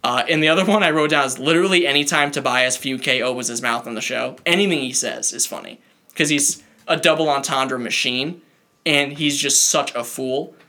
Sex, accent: male, American